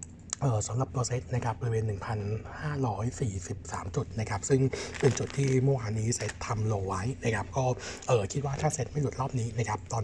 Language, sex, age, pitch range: Thai, male, 60-79, 110-130 Hz